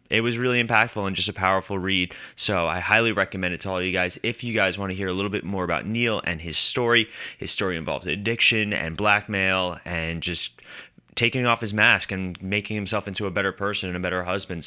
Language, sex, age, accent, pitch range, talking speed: English, male, 20-39, American, 95-115 Hz, 230 wpm